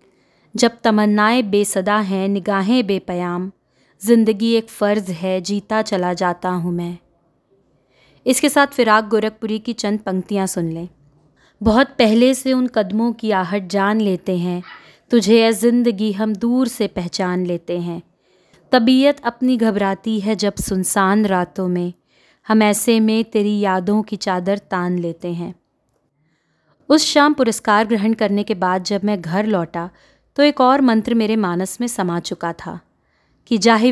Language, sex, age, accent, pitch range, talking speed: Hindi, female, 20-39, native, 185-230 Hz, 150 wpm